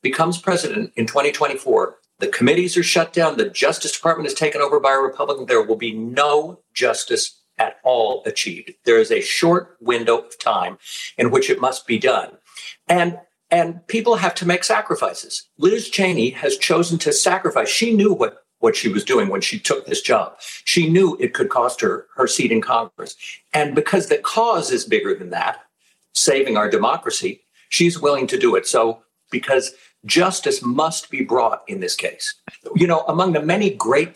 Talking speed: 185 wpm